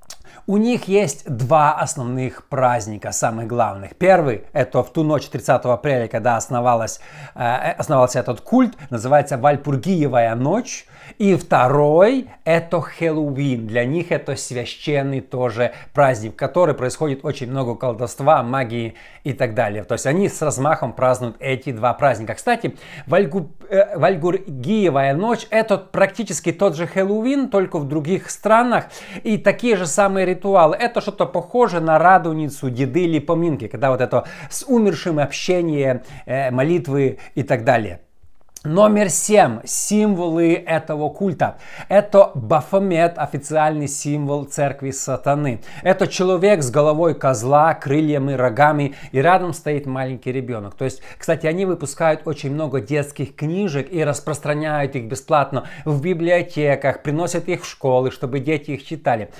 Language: Russian